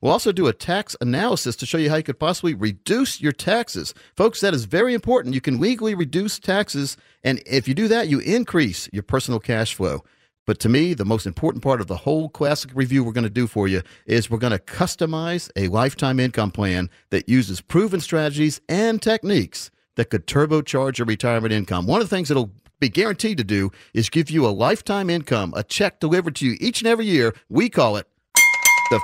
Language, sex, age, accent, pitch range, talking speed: English, male, 50-69, American, 120-185 Hz, 215 wpm